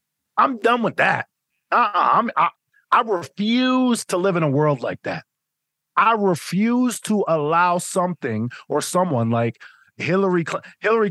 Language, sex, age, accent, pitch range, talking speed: English, male, 30-49, American, 145-195 Hz, 140 wpm